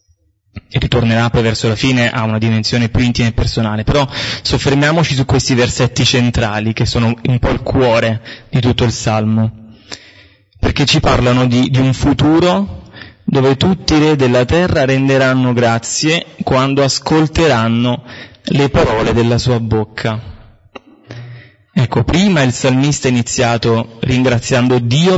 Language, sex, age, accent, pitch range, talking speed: Italian, male, 20-39, native, 110-135 Hz, 140 wpm